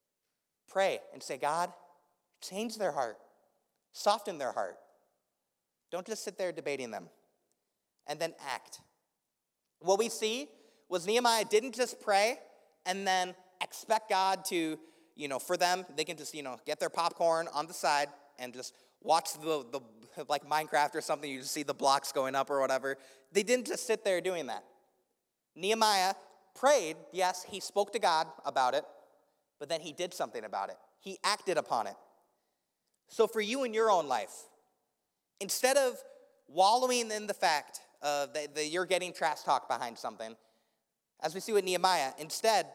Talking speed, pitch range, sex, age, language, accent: 170 wpm, 150-210 Hz, male, 30-49, English, American